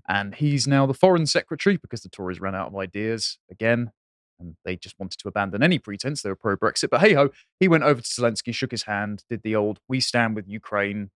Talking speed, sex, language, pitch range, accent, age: 225 wpm, male, English, 110-155 Hz, British, 20-39